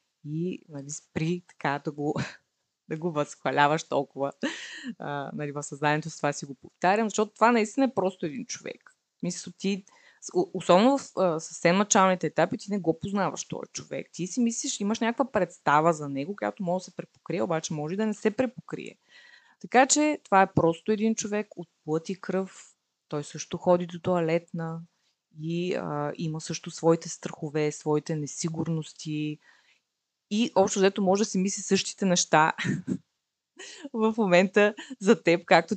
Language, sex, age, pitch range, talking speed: Bulgarian, female, 20-39, 160-215 Hz, 160 wpm